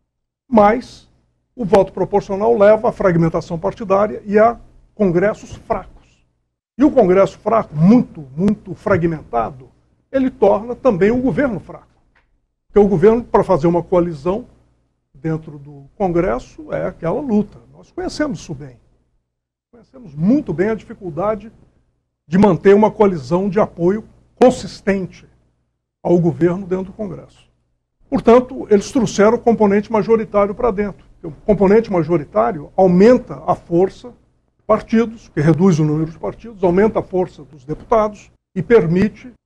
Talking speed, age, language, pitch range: 135 wpm, 60-79, Portuguese, 165-215 Hz